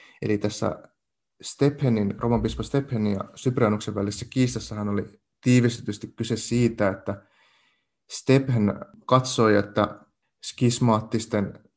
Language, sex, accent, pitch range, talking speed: Finnish, male, native, 105-120 Hz, 90 wpm